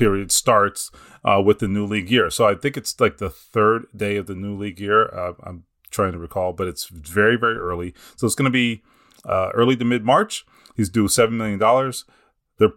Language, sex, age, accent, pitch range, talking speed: English, male, 30-49, American, 100-125 Hz, 210 wpm